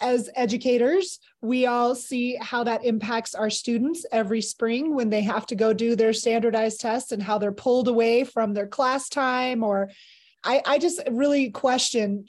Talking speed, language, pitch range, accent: 175 wpm, English, 225-275 Hz, American